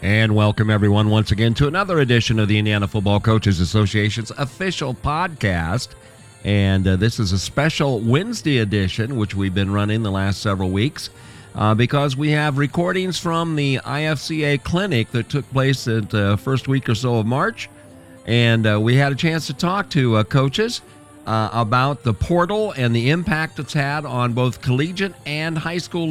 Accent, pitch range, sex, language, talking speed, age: American, 110-155 Hz, male, English, 180 wpm, 50-69